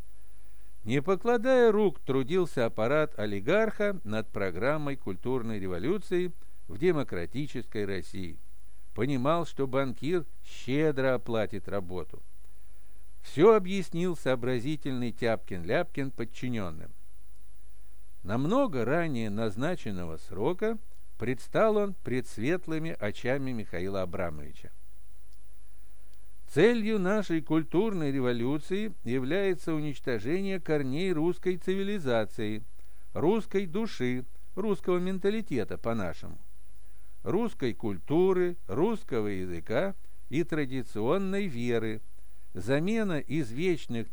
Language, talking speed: Russian, 80 wpm